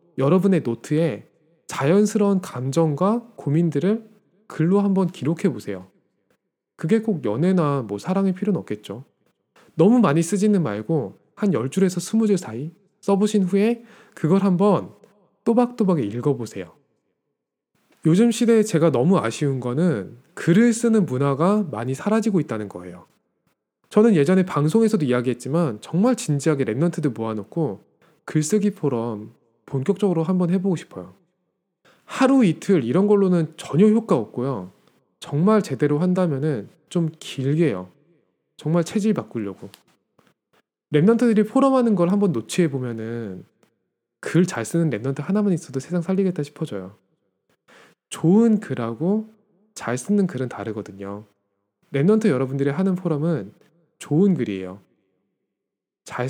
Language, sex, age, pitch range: Korean, male, 20-39, 135-200 Hz